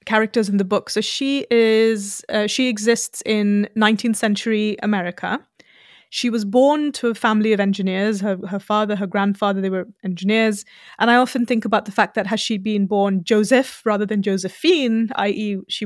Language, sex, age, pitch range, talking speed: English, female, 20-39, 205-235 Hz, 185 wpm